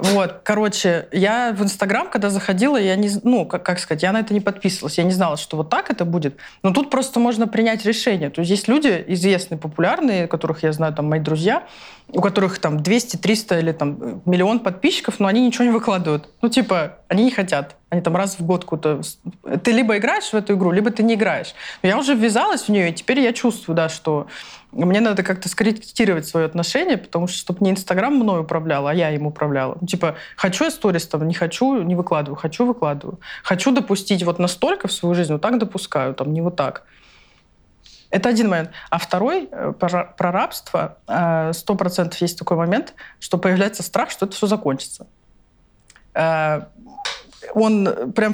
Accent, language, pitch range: native, Russian, 165-215 Hz